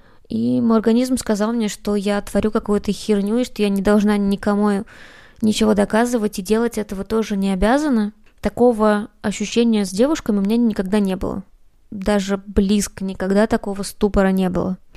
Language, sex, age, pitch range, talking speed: Russian, female, 20-39, 200-235 Hz, 165 wpm